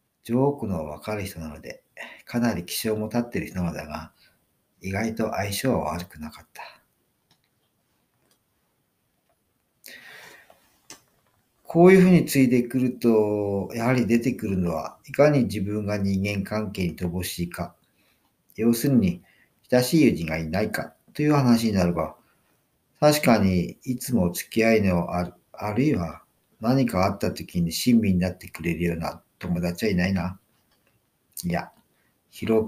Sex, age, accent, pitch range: male, 50-69, native, 90-120 Hz